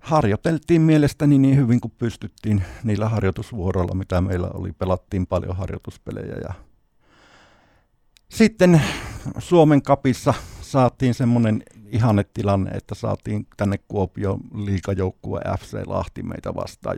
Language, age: Finnish, 50-69